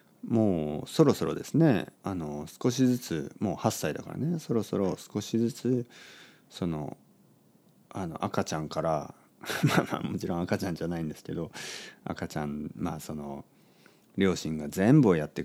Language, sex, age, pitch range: Japanese, male, 40-59, 85-130 Hz